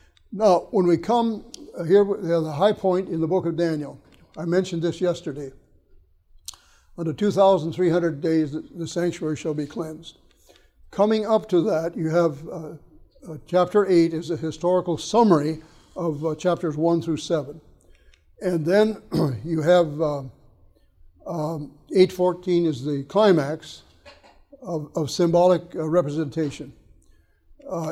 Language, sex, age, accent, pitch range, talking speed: English, male, 60-79, American, 150-175 Hz, 135 wpm